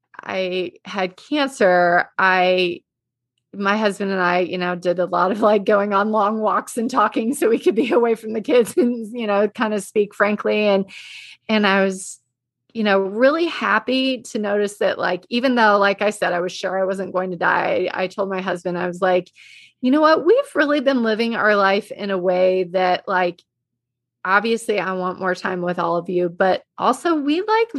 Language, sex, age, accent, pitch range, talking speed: English, female, 30-49, American, 180-225 Hz, 205 wpm